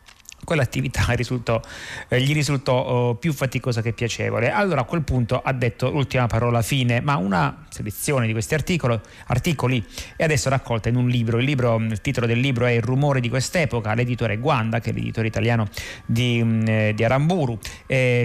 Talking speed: 170 wpm